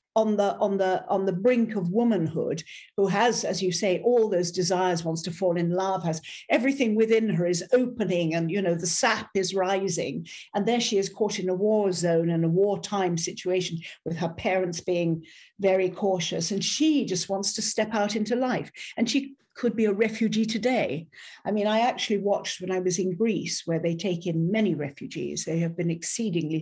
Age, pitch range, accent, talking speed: 50-69, 170-215 Hz, British, 205 wpm